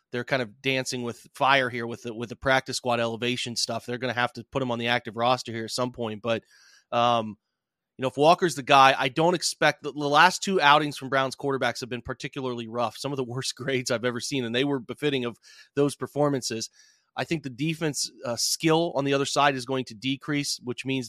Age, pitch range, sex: 30-49, 125-155 Hz, male